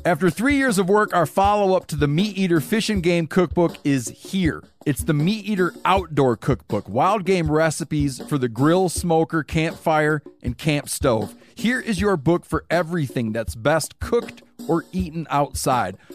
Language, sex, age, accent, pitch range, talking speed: English, male, 40-59, American, 140-175 Hz, 170 wpm